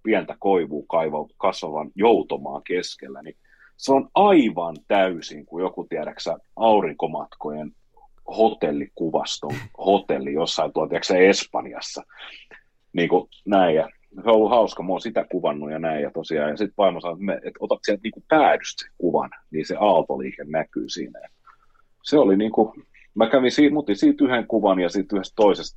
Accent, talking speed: native, 150 wpm